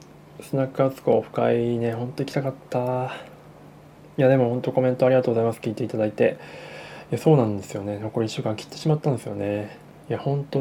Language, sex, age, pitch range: Japanese, male, 20-39, 110-135 Hz